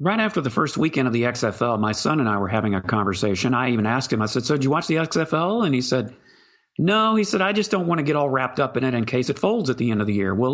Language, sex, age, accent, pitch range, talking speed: English, male, 40-59, American, 120-175 Hz, 320 wpm